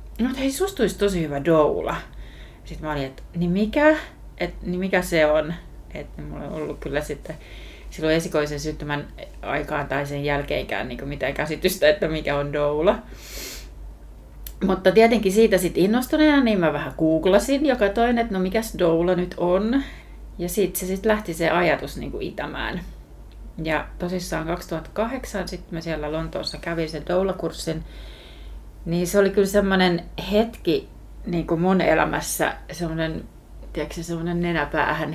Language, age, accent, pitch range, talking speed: Finnish, 30-49, native, 150-190 Hz, 150 wpm